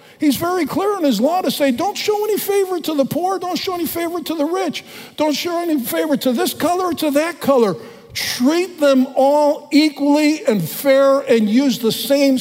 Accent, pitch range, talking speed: American, 180-255 Hz, 210 wpm